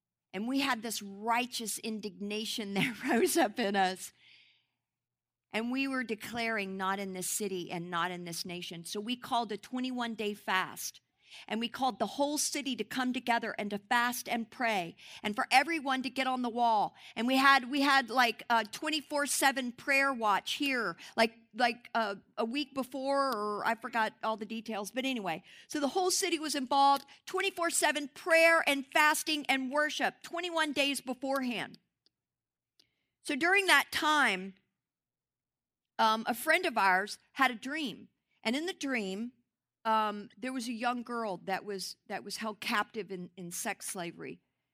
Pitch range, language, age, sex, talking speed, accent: 195-265 Hz, English, 50-69, female, 165 wpm, American